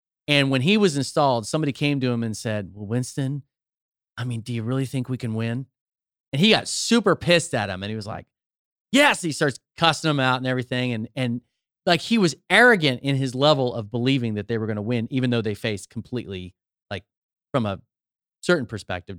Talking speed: 215 wpm